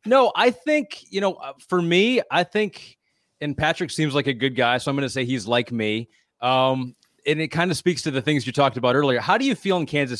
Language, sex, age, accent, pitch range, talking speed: English, male, 30-49, American, 120-155 Hz, 255 wpm